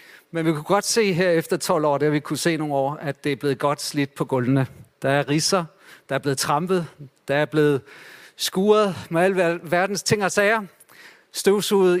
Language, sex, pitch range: Danish, male, 150-200 Hz